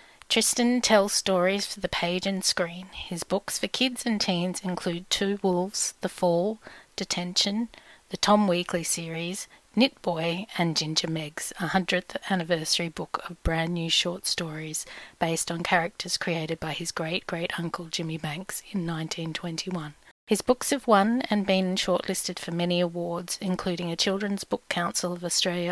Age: 30-49